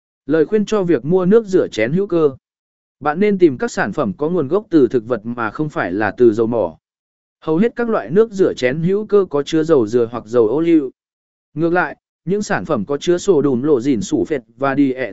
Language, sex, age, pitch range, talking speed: Vietnamese, male, 20-39, 150-205 Hz, 245 wpm